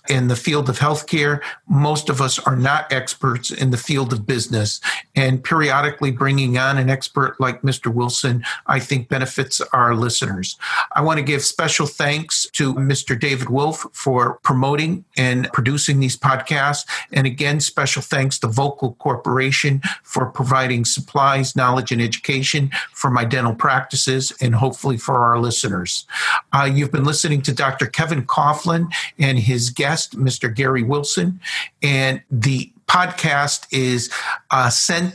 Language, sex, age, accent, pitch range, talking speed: English, male, 50-69, American, 130-150 Hz, 150 wpm